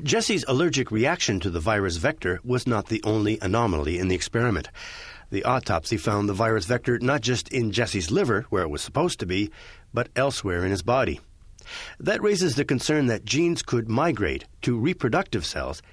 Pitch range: 95-125 Hz